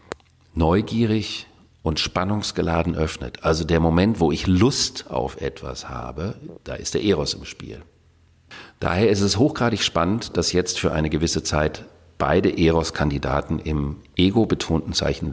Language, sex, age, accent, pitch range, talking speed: German, male, 50-69, German, 80-105 Hz, 135 wpm